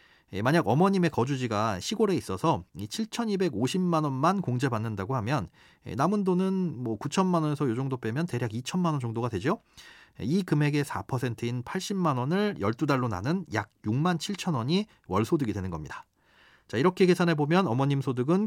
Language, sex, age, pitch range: Korean, male, 40-59, 110-165 Hz